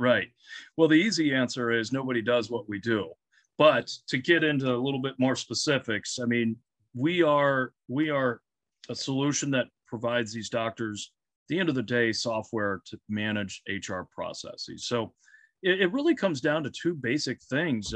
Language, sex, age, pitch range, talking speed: English, male, 40-59, 110-140 Hz, 175 wpm